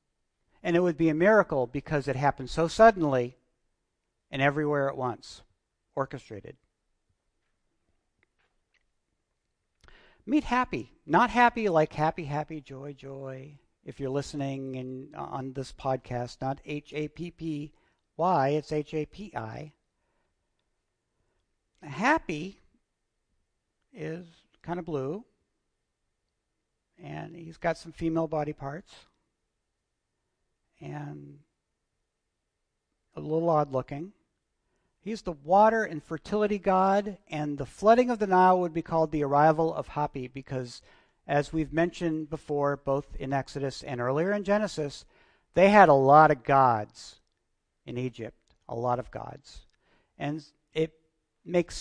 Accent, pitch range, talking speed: American, 135-170 Hz, 115 wpm